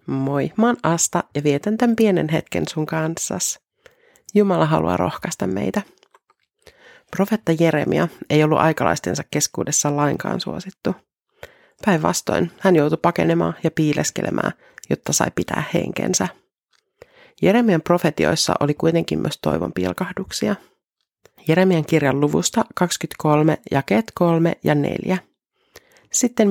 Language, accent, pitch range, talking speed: Finnish, native, 150-195 Hz, 110 wpm